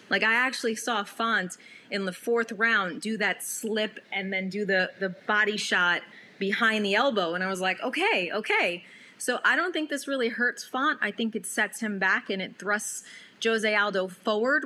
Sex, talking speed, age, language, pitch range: female, 195 wpm, 30-49, English, 195-230 Hz